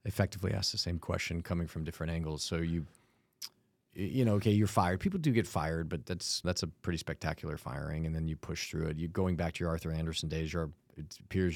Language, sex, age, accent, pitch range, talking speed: English, male, 30-49, American, 85-105 Hz, 230 wpm